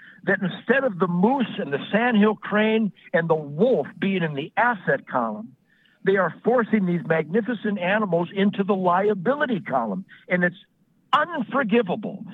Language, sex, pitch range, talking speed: English, male, 180-225 Hz, 145 wpm